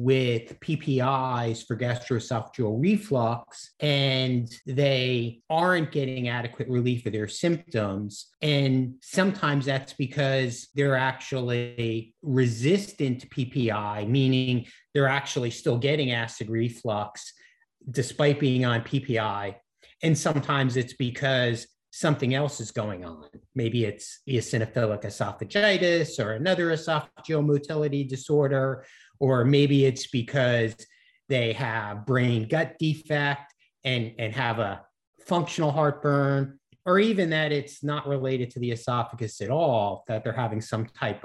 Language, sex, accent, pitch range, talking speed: English, male, American, 120-150 Hz, 120 wpm